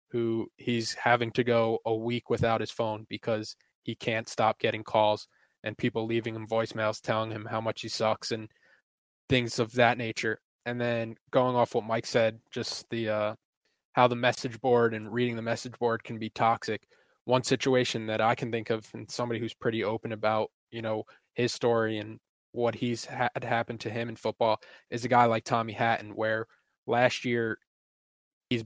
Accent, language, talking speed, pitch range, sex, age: American, English, 190 wpm, 110-120 Hz, male, 20-39